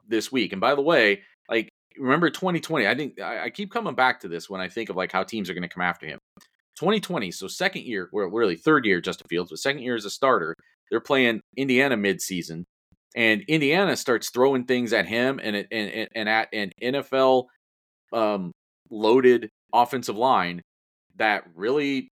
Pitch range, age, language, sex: 100-135 Hz, 40-59, English, male